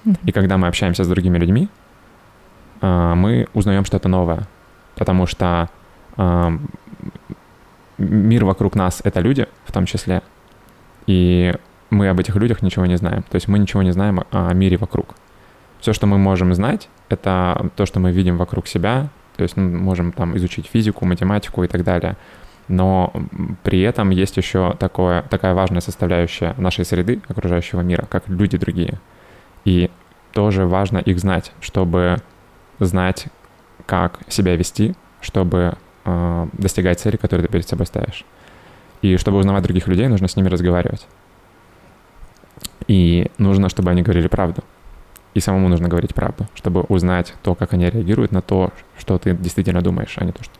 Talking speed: 155 wpm